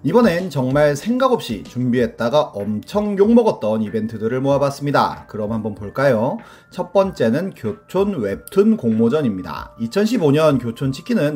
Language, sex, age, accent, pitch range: Korean, male, 30-49, native, 125-200 Hz